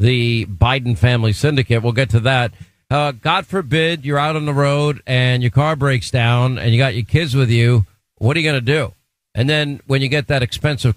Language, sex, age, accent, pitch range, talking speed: English, male, 50-69, American, 120-145 Hz, 225 wpm